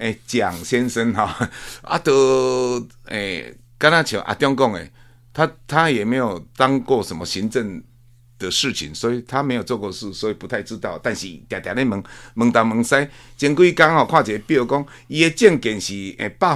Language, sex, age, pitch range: Chinese, male, 50-69, 115-150 Hz